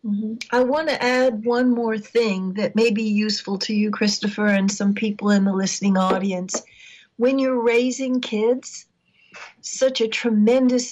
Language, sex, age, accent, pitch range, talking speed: English, female, 60-79, American, 195-230 Hz, 160 wpm